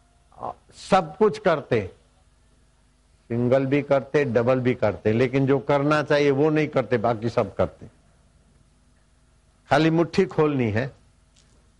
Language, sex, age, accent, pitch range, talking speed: Hindi, male, 60-79, native, 90-150 Hz, 115 wpm